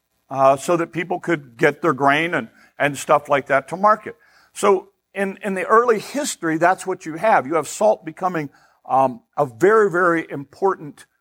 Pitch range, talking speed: 140-180 Hz, 180 wpm